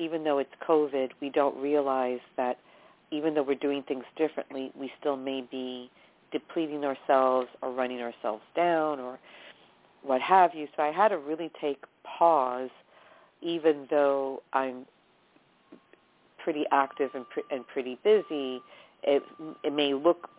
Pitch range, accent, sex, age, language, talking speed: 130-150 Hz, American, female, 50-69, English, 145 wpm